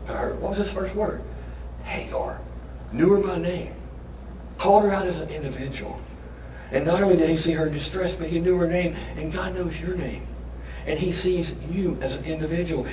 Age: 60-79